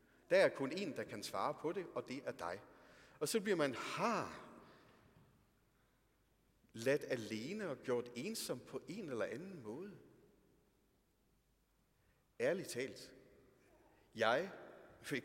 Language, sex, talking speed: Danish, male, 125 wpm